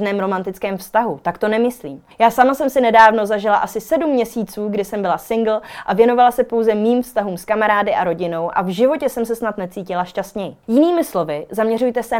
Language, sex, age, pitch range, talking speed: Czech, female, 20-39, 185-240 Hz, 195 wpm